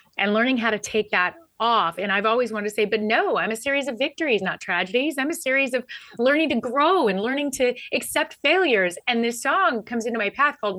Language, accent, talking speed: English, American, 235 wpm